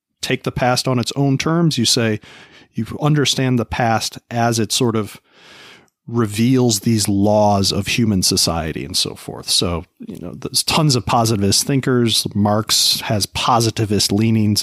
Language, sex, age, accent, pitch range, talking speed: English, male, 40-59, American, 105-130 Hz, 155 wpm